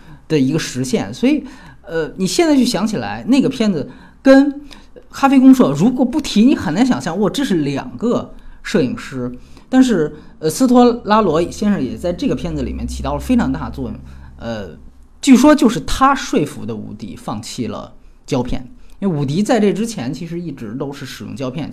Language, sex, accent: Chinese, male, native